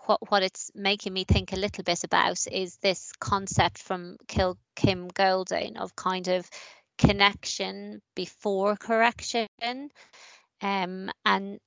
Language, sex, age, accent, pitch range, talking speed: English, female, 20-39, British, 190-210 Hz, 130 wpm